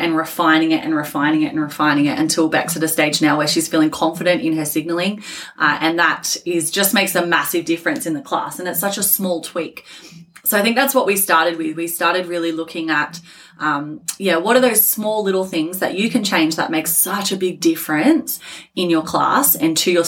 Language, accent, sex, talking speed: English, Australian, female, 230 wpm